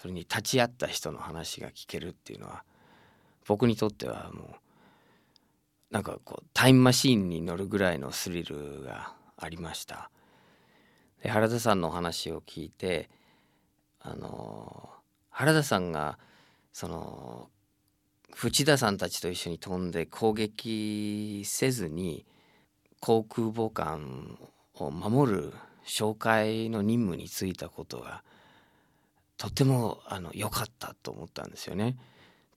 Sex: male